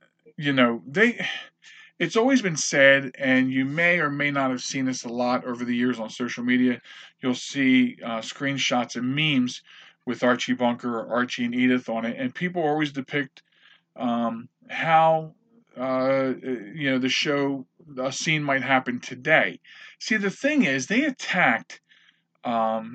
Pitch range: 125-195 Hz